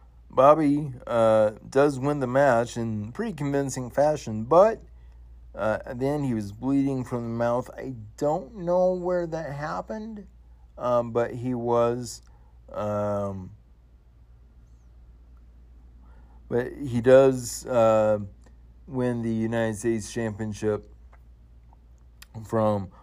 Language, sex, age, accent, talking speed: English, male, 50-69, American, 105 wpm